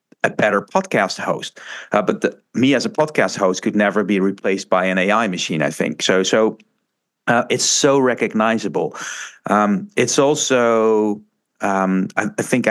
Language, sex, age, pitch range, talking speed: English, male, 50-69, 95-125 Hz, 165 wpm